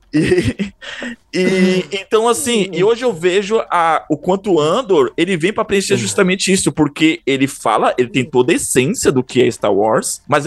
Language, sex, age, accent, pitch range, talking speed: Portuguese, male, 20-39, Brazilian, 120-180 Hz, 185 wpm